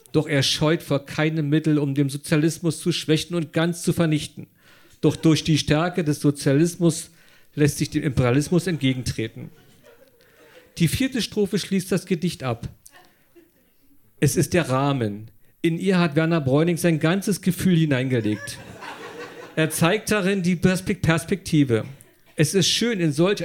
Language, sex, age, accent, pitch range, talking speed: German, male, 50-69, German, 145-180 Hz, 145 wpm